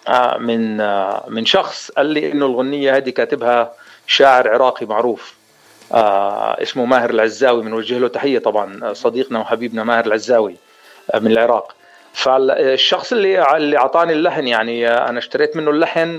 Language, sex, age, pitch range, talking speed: Arabic, male, 40-59, 125-175 Hz, 125 wpm